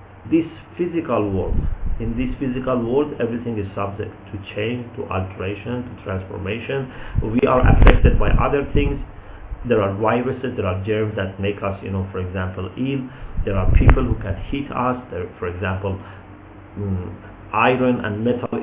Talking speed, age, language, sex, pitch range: 160 wpm, 50-69, English, male, 100-125 Hz